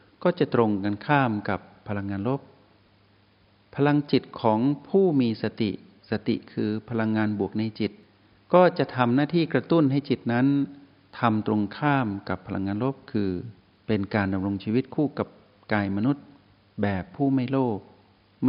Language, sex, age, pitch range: Thai, male, 60-79, 100-130 Hz